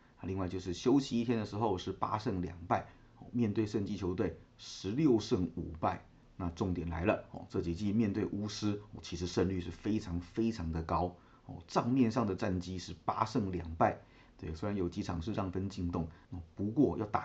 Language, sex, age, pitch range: Chinese, male, 30-49, 90-115 Hz